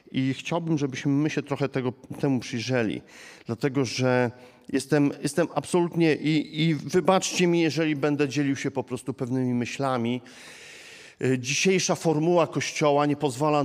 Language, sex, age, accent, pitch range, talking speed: Polish, male, 40-59, native, 120-145 Hz, 130 wpm